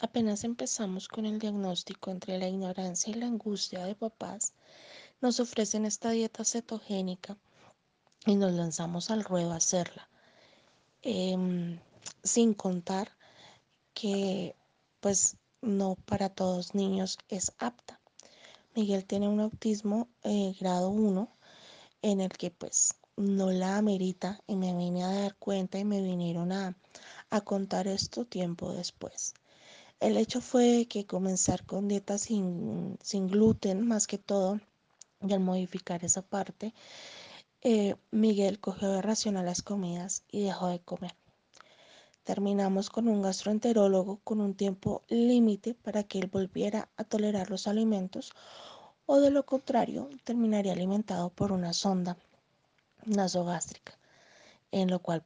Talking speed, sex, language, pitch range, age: 135 wpm, female, English, 185-215 Hz, 20-39